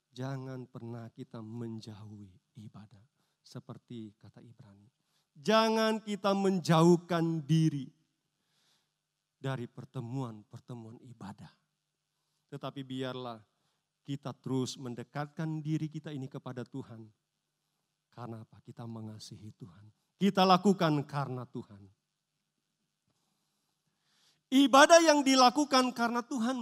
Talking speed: 90 wpm